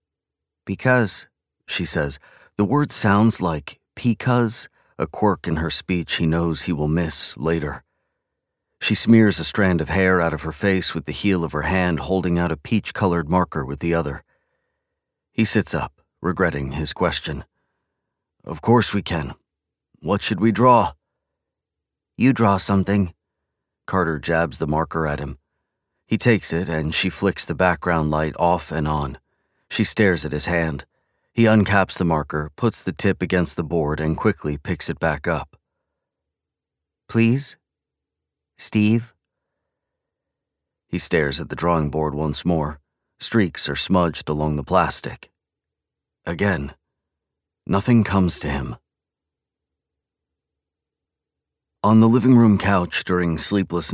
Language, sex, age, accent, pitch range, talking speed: English, male, 40-59, American, 75-100 Hz, 140 wpm